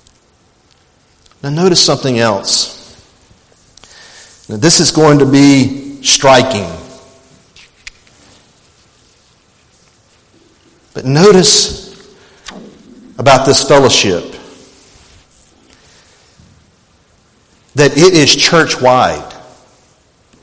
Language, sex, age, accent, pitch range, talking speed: English, male, 50-69, American, 200-285 Hz, 60 wpm